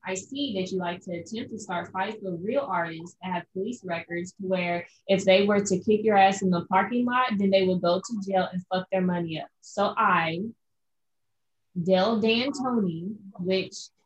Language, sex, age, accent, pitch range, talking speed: English, female, 20-39, American, 180-215 Hz, 190 wpm